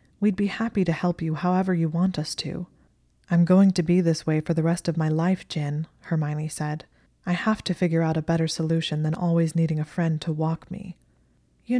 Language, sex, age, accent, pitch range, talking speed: English, female, 20-39, American, 155-175 Hz, 220 wpm